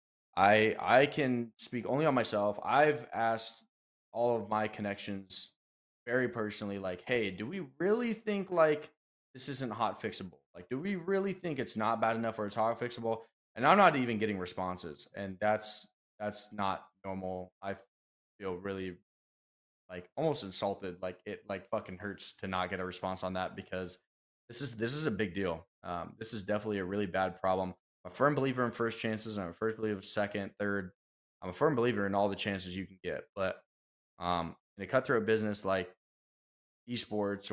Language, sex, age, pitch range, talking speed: English, male, 20-39, 95-120 Hz, 190 wpm